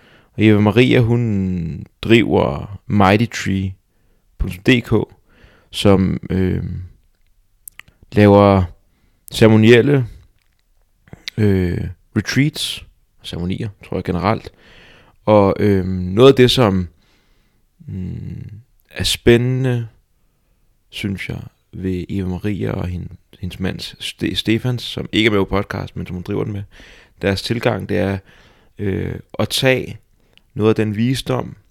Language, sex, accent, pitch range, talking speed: Danish, male, native, 95-110 Hz, 105 wpm